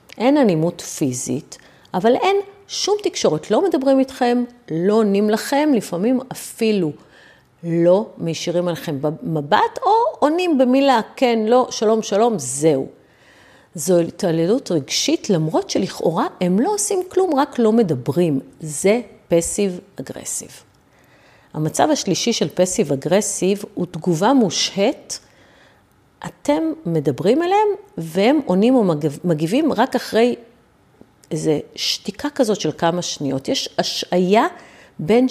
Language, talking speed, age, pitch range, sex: Hebrew, 115 wpm, 40-59, 165-245 Hz, female